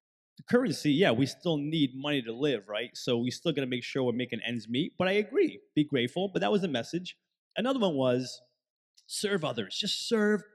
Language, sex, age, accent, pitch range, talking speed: English, male, 30-49, American, 135-185 Hz, 215 wpm